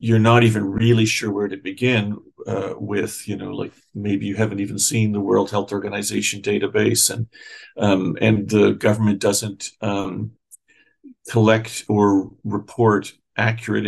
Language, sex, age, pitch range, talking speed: English, male, 40-59, 100-115 Hz, 145 wpm